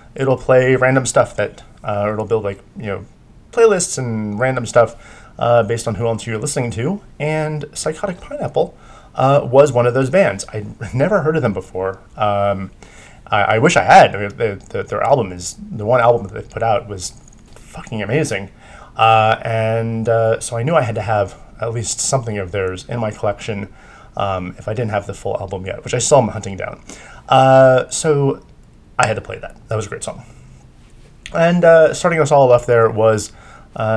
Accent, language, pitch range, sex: American, English, 110-150 Hz, male